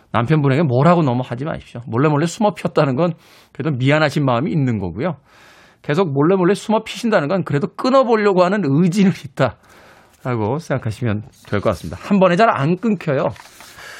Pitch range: 120-180 Hz